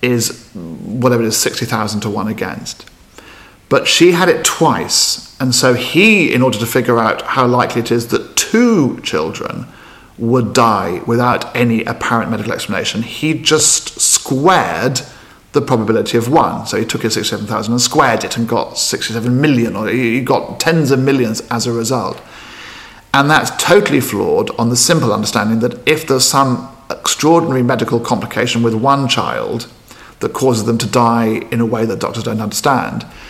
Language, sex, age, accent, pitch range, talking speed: English, male, 50-69, British, 115-135 Hz, 170 wpm